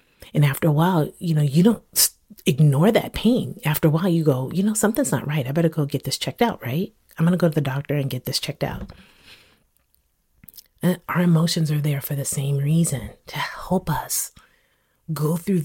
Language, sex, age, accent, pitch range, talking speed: English, female, 30-49, American, 145-170 Hz, 205 wpm